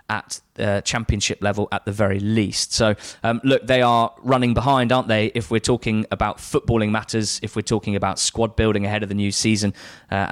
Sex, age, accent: male, 20-39, British